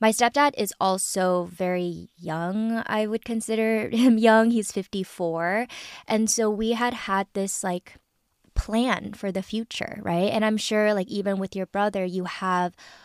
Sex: female